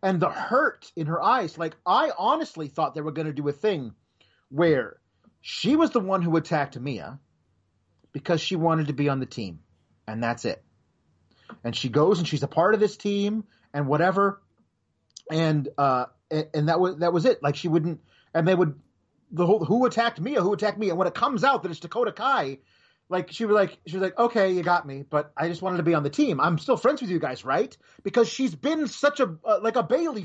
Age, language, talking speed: 30-49, English, 230 wpm